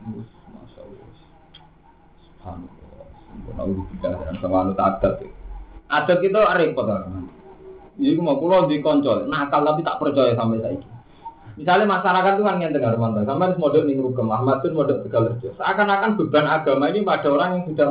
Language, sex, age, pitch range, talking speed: Indonesian, male, 30-49, 125-185 Hz, 100 wpm